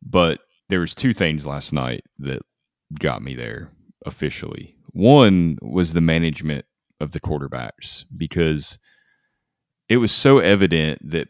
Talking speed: 135 wpm